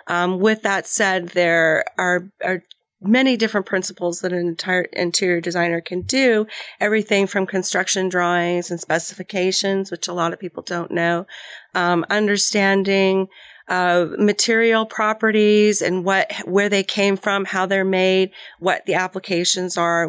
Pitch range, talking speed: 175-205 Hz, 145 wpm